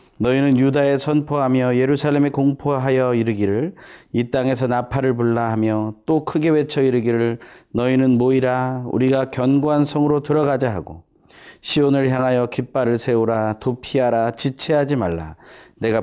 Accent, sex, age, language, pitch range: native, male, 30-49, Korean, 110-145 Hz